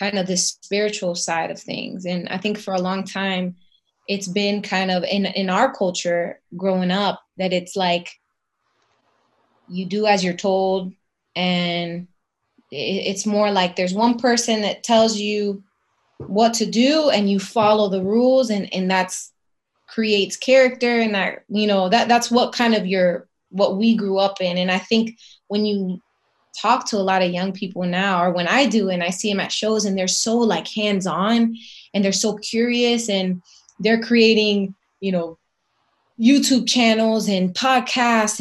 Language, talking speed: English, 175 wpm